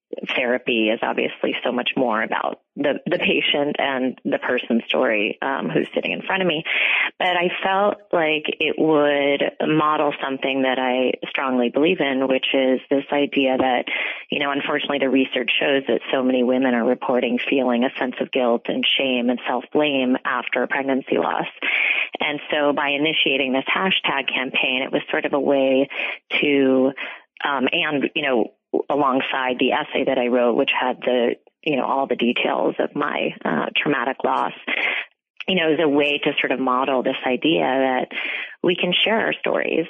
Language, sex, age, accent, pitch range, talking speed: English, female, 30-49, American, 130-145 Hz, 175 wpm